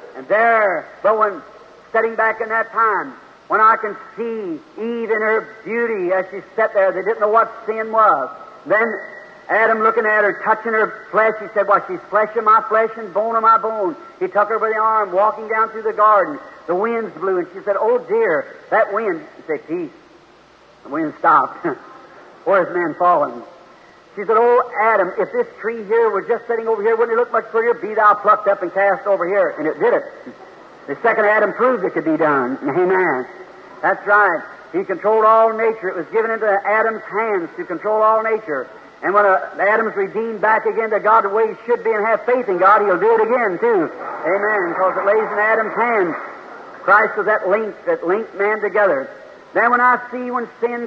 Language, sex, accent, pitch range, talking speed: English, male, American, 210-250 Hz, 210 wpm